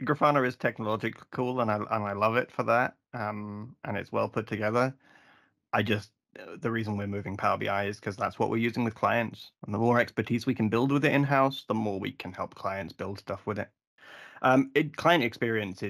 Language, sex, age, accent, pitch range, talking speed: English, male, 20-39, British, 105-120 Hz, 225 wpm